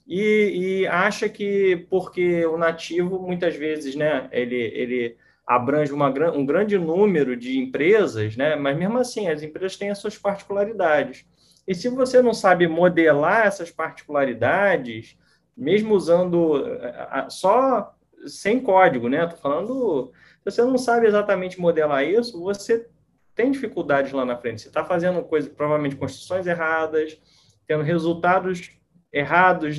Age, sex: 20-39, male